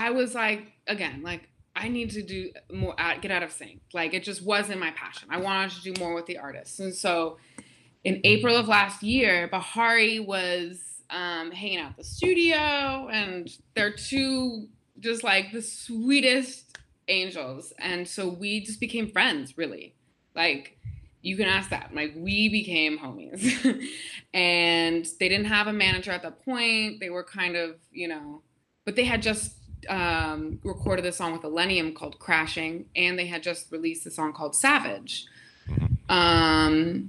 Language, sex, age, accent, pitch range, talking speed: English, female, 20-39, American, 170-220 Hz, 170 wpm